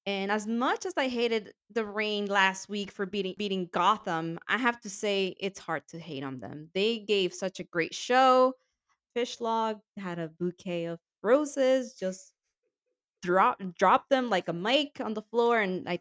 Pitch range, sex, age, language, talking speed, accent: 175-225 Hz, female, 20-39, English, 185 wpm, American